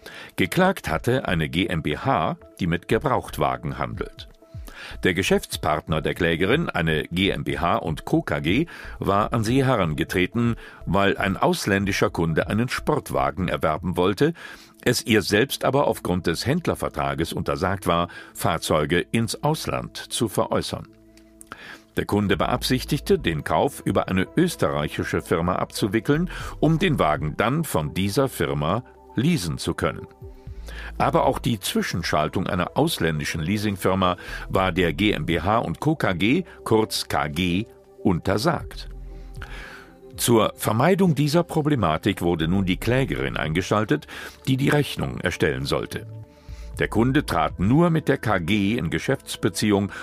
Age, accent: 50-69, German